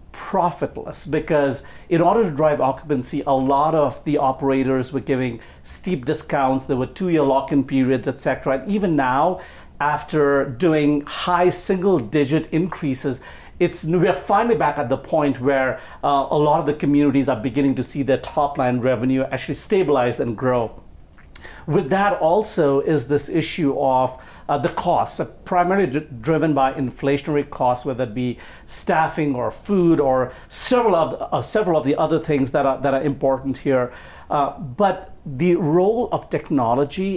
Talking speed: 170 wpm